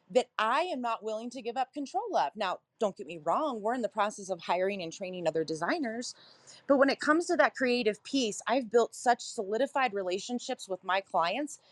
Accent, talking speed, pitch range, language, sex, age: American, 210 wpm, 205-290 Hz, English, female, 30-49